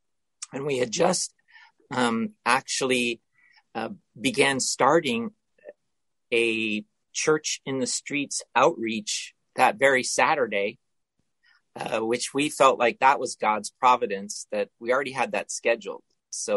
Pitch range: 110-150 Hz